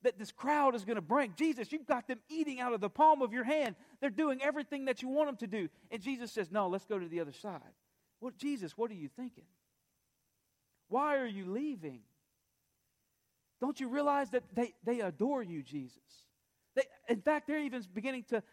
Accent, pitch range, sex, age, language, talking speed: American, 175-265 Hz, male, 40-59, English, 200 wpm